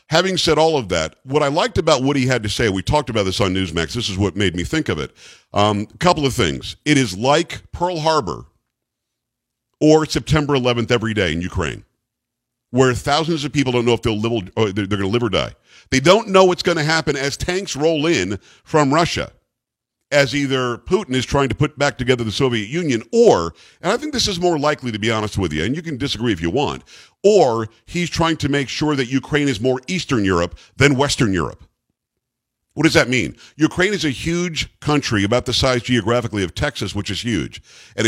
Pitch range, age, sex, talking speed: 110-150 Hz, 50-69, male, 215 wpm